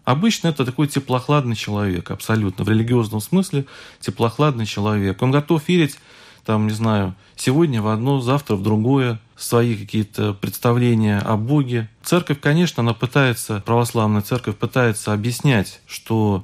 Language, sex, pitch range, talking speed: Russian, male, 105-130 Hz, 135 wpm